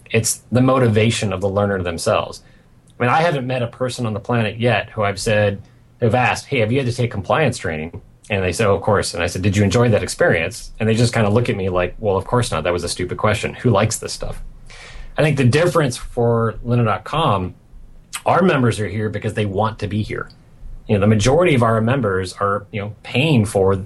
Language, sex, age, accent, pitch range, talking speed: English, male, 30-49, American, 105-125 Hz, 240 wpm